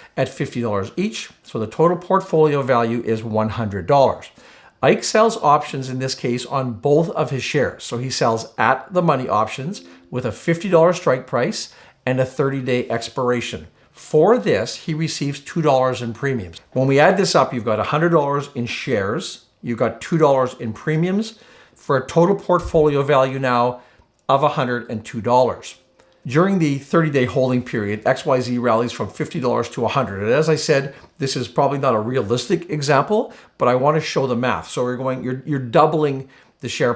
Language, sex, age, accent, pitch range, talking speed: English, male, 50-69, American, 120-155 Hz, 170 wpm